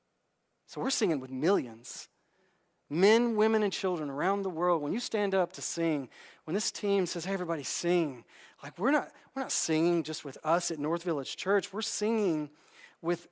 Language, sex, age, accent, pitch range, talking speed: English, male, 40-59, American, 180-255 Hz, 185 wpm